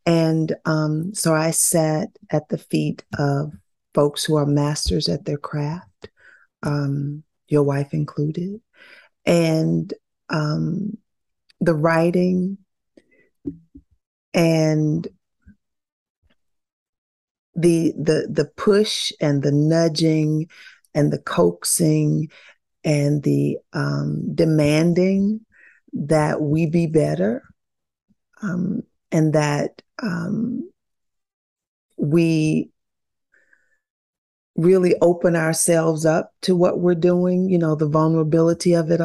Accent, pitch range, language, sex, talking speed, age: American, 155-180 Hz, English, female, 95 wpm, 40-59